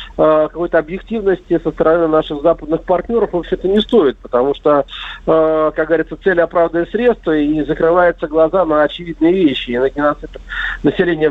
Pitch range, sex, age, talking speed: 155-190 Hz, male, 50-69, 140 wpm